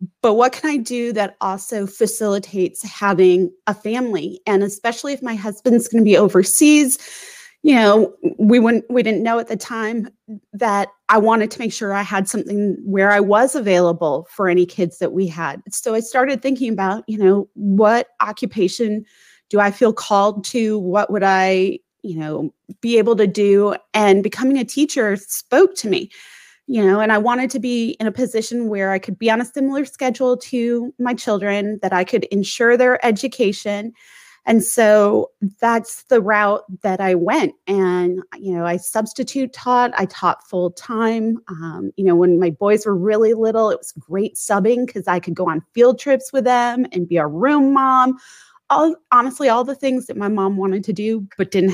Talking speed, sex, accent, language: 190 wpm, female, American, English